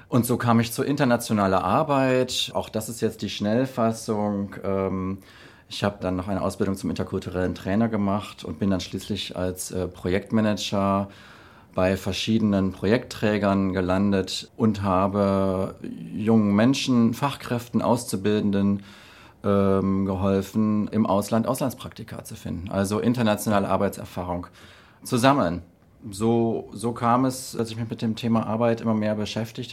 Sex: male